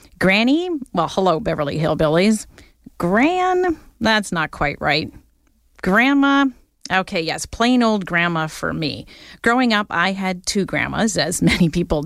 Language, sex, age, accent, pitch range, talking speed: English, female, 40-59, American, 165-230 Hz, 135 wpm